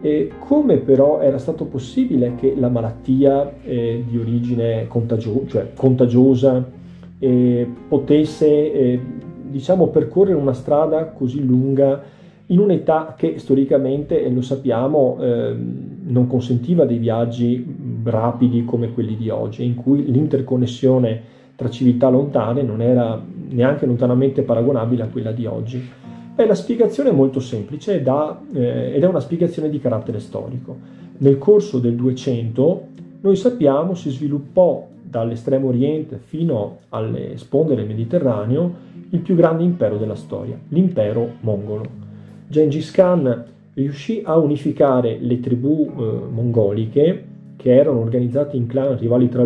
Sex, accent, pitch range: male, native, 120-150 Hz